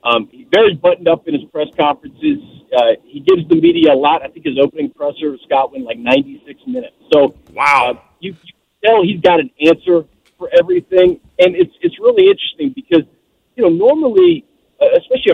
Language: English